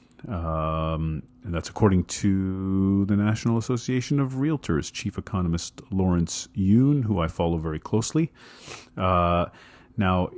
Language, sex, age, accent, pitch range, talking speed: English, male, 40-59, American, 85-110 Hz, 120 wpm